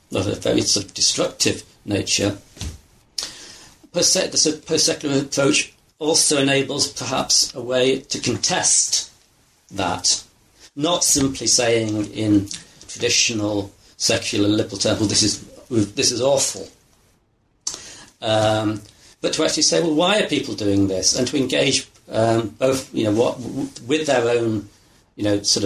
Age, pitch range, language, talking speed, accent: 50-69, 105-140 Hz, English, 140 wpm, British